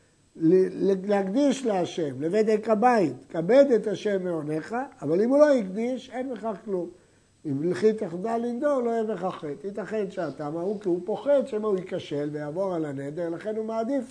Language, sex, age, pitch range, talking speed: Hebrew, male, 60-79, 175-230 Hz, 165 wpm